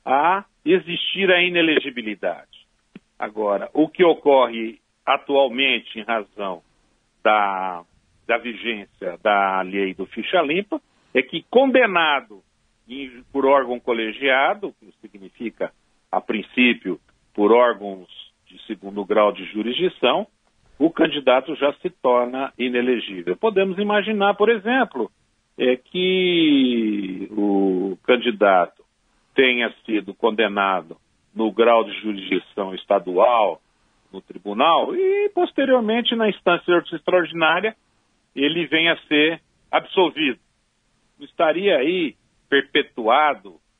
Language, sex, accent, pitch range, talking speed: Portuguese, male, Brazilian, 110-175 Hz, 100 wpm